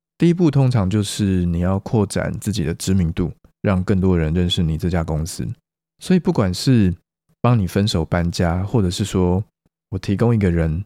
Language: Chinese